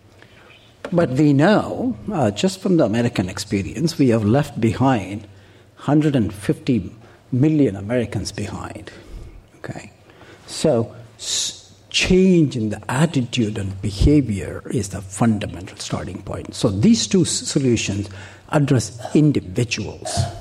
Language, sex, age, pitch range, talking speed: English, male, 60-79, 105-140 Hz, 105 wpm